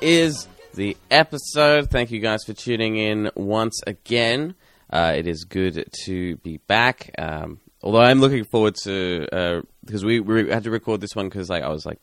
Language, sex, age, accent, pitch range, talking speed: English, male, 20-39, Australian, 85-110 Hz, 190 wpm